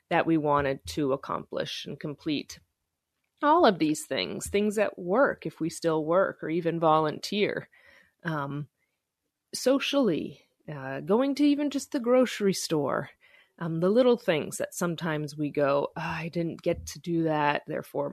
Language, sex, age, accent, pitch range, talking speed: English, female, 30-49, American, 155-230 Hz, 150 wpm